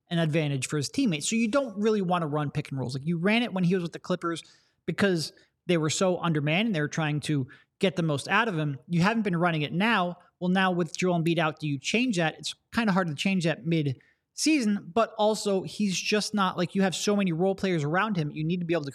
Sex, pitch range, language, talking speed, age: male, 155-195 Hz, English, 270 wpm, 30-49